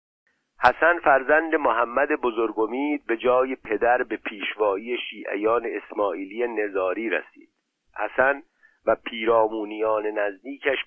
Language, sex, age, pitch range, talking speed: Persian, male, 50-69, 105-155 Hz, 95 wpm